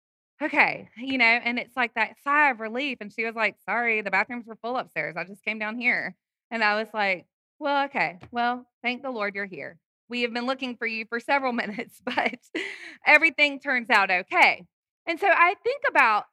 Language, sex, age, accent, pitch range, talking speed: English, female, 20-39, American, 215-280 Hz, 205 wpm